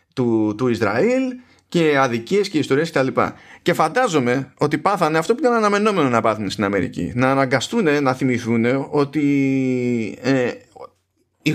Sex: male